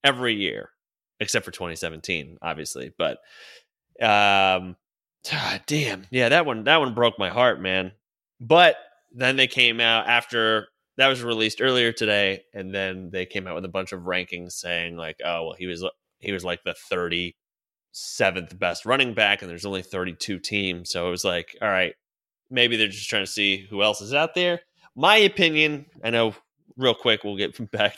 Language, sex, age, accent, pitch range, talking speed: English, male, 30-49, American, 95-115 Hz, 180 wpm